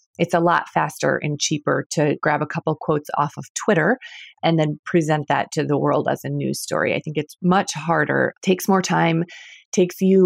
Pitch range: 155-195 Hz